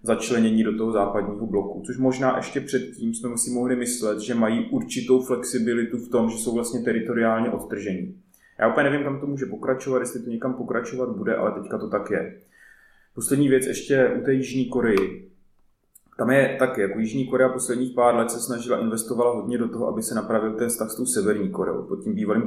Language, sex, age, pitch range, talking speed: Czech, male, 20-39, 115-130 Hz, 200 wpm